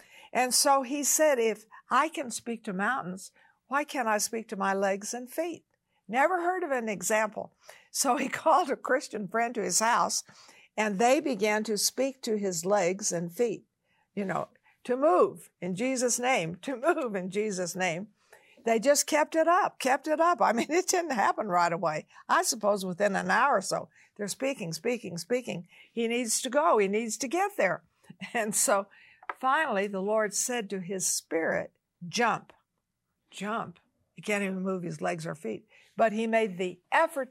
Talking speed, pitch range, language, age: 185 wpm, 195-255 Hz, English, 60-79